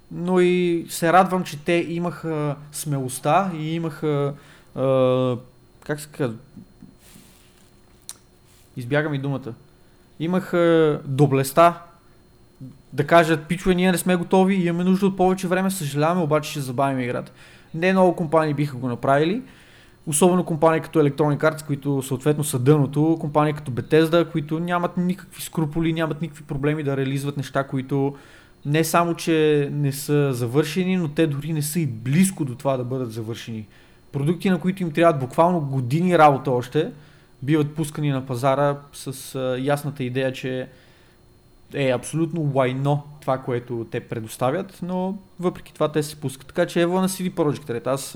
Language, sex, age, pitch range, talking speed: Bulgarian, male, 20-39, 135-170 Hz, 150 wpm